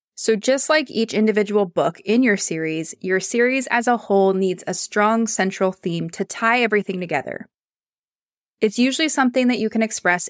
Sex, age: female, 20-39